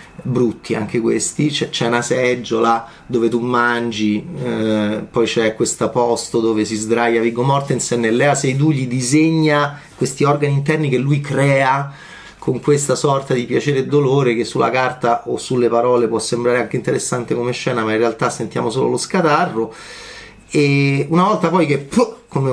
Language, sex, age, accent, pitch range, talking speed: Italian, male, 30-49, native, 120-150 Hz, 170 wpm